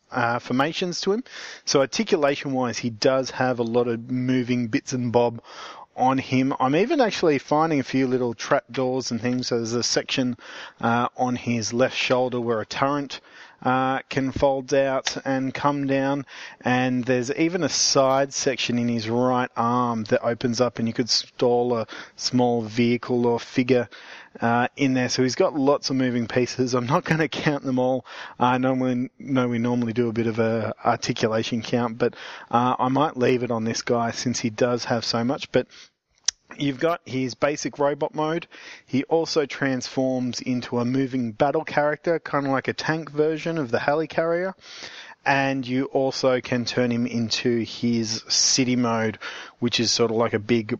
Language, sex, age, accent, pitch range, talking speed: English, male, 30-49, Australian, 120-140 Hz, 185 wpm